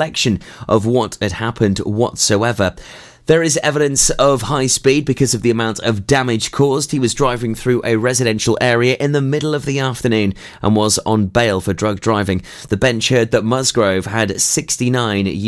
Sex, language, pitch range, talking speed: male, English, 105-130 Hz, 175 wpm